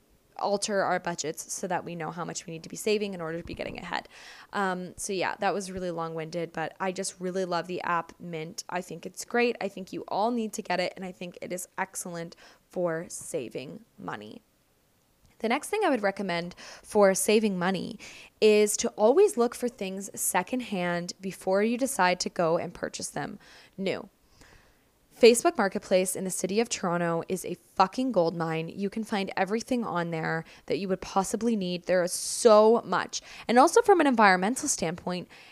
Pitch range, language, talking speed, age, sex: 180-225 Hz, English, 195 wpm, 10-29, female